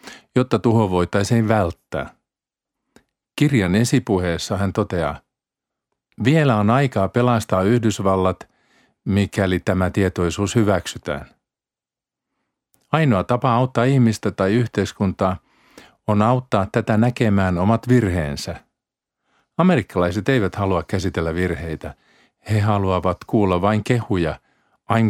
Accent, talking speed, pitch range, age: native, 95 wpm, 90-115 Hz, 50-69